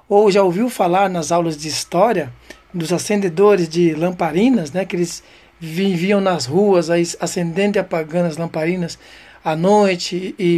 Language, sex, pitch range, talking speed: Portuguese, male, 170-205 Hz, 155 wpm